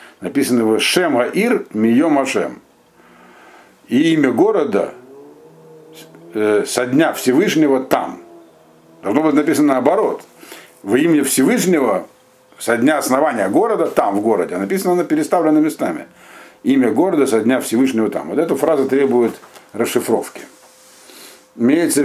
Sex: male